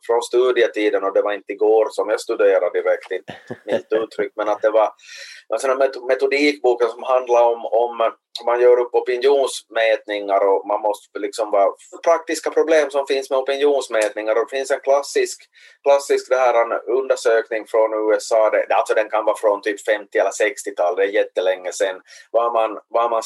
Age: 30-49